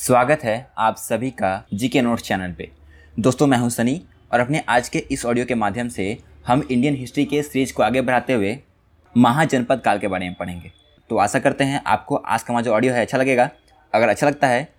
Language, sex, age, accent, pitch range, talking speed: Hindi, male, 20-39, native, 110-140 Hz, 215 wpm